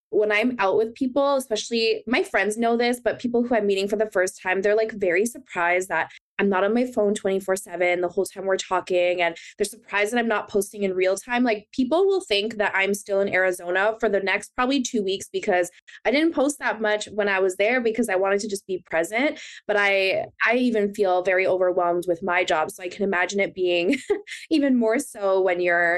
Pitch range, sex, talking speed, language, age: 180-225 Hz, female, 230 wpm, English, 20-39